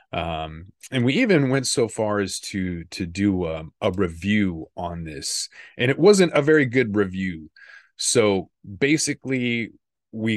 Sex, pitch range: male, 90-115 Hz